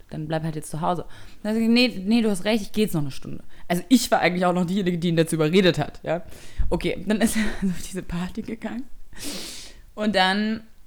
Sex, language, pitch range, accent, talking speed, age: female, German, 165-220 Hz, German, 230 wpm, 20-39